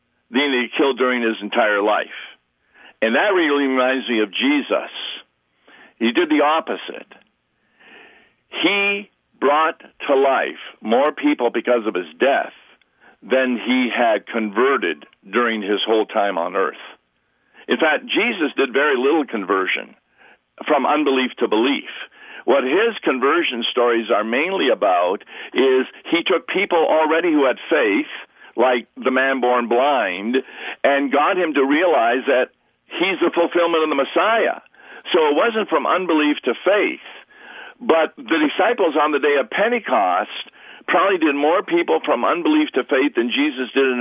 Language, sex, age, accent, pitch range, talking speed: English, male, 60-79, American, 120-170 Hz, 150 wpm